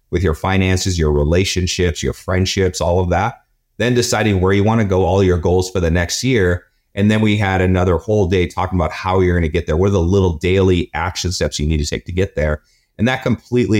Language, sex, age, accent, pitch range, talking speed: English, male, 30-49, American, 90-115 Hz, 245 wpm